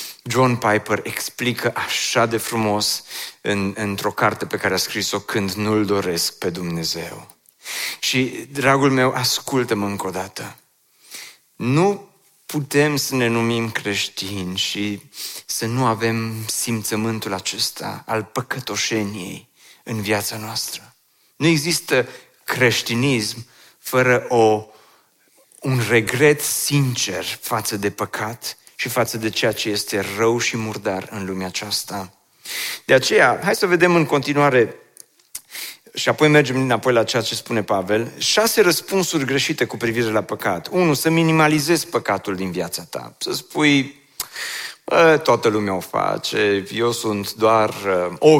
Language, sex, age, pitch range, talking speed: Romanian, male, 30-49, 105-140 Hz, 130 wpm